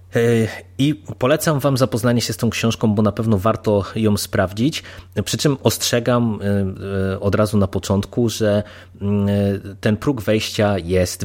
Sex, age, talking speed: male, 20-39, 140 wpm